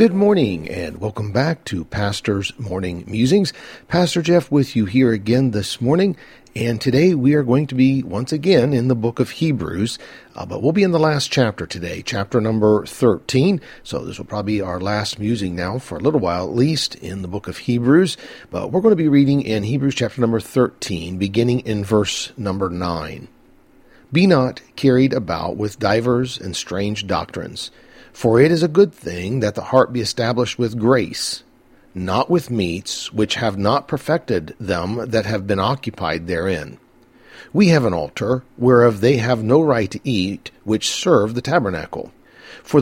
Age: 50-69